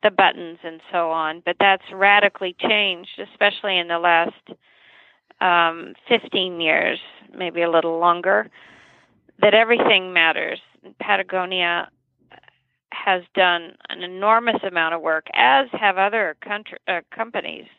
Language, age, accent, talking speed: English, 50-69, American, 120 wpm